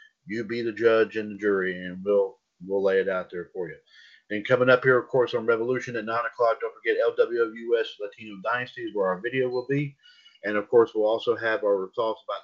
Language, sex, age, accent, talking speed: English, male, 40-59, American, 220 wpm